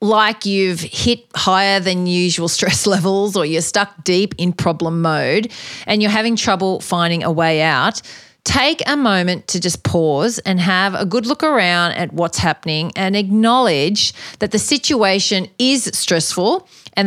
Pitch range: 170-220 Hz